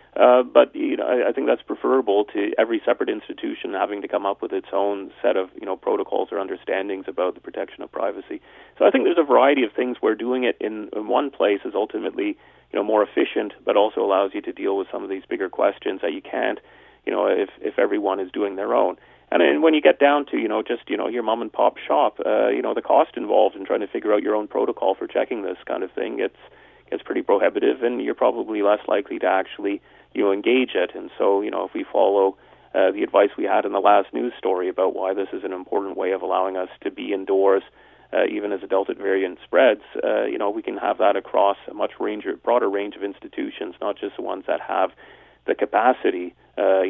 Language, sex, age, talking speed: English, male, 30-49, 245 wpm